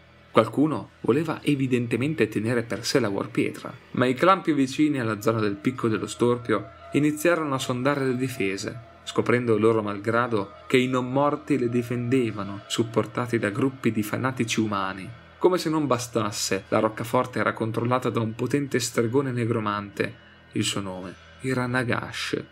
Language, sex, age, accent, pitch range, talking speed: Italian, male, 30-49, native, 110-130 Hz, 150 wpm